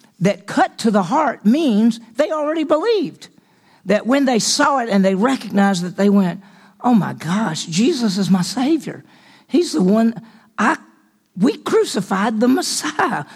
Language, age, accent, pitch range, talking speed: English, 50-69, American, 190-235 Hz, 155 wpm